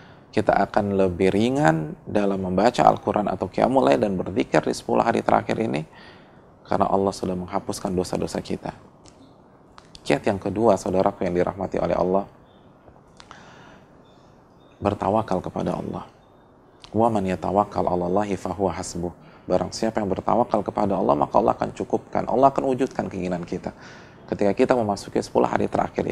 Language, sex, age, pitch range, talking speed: Indonesian, male, 30-49, 95-110 Hz, 125 wpm